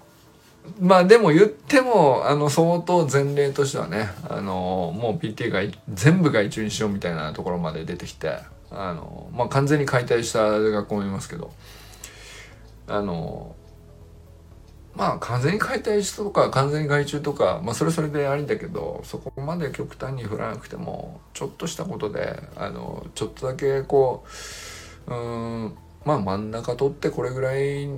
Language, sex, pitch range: Japanese, male, 100-145 Hz